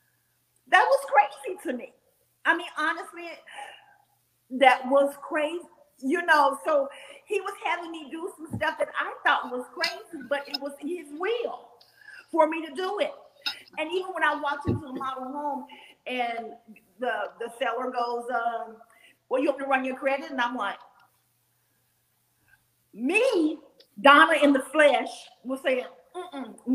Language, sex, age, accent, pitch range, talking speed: English, female, 40-59, American, 250-330 Hz, 155 wpm